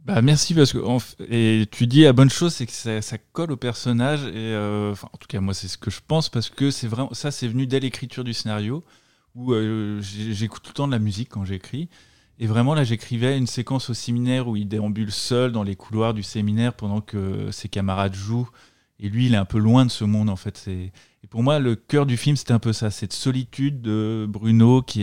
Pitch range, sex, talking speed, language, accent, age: 105-125 Hz, male, 250 wpm, French, French, 20-39